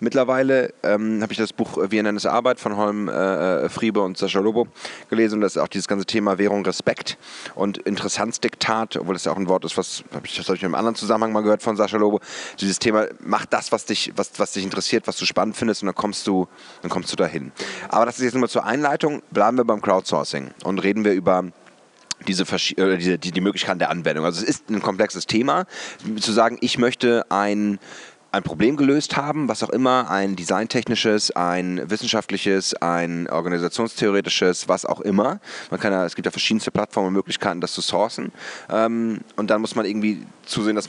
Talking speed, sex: 210 wpm, male